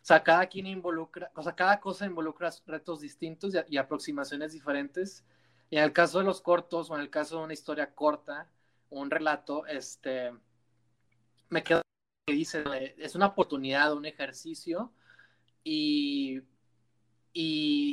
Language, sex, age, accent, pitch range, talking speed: Spanish, male, 30-49, Mexican, 155-200 Hz, 155 wpm